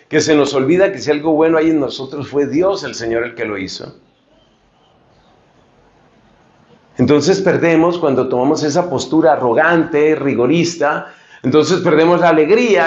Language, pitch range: Spanish, 145-185 Hz